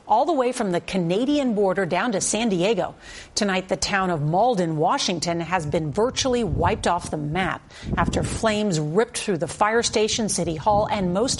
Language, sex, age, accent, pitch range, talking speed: English, female, 40-59, American, 180-220 Hz, 185 wpm